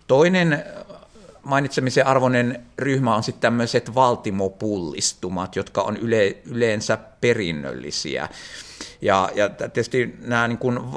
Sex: male